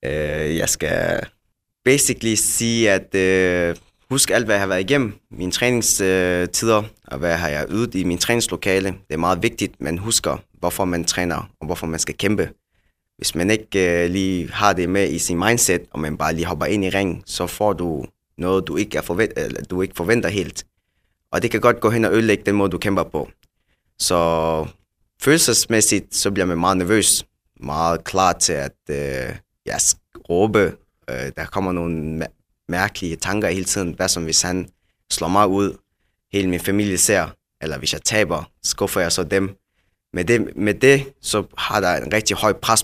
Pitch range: 85-105 Hz